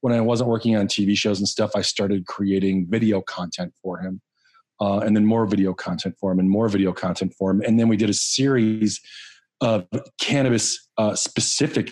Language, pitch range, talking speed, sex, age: English, 100-115 Hz, 200 wpm, male, 30-49